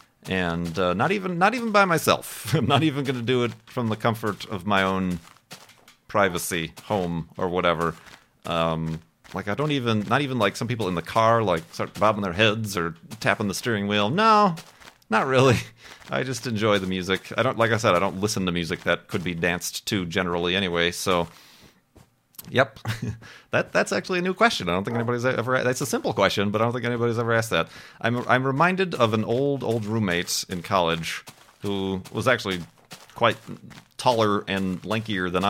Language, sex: English, male